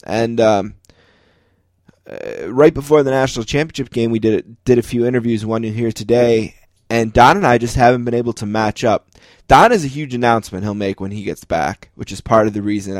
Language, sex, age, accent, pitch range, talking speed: English, male, 20-39, American, 100-120 Hz, 220 wpm